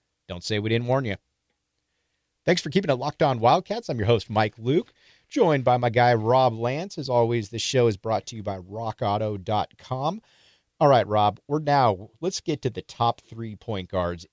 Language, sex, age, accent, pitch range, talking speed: English, male, 40-59, American, 90-120 Hz, 195 wpm